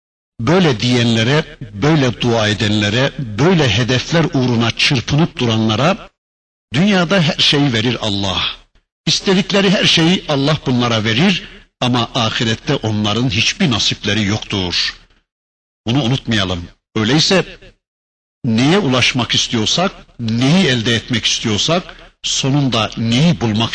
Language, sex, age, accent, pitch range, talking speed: Turkish, male, 60-79, native, 110-175 Hz, 100 wpm